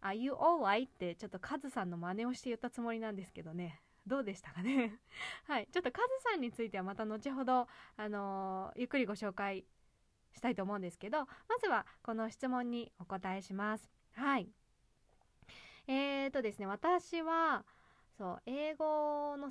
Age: 20-39